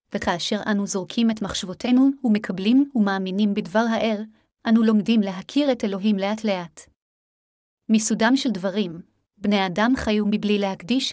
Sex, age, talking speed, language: female, 30-49, 125 wpm, Hebrew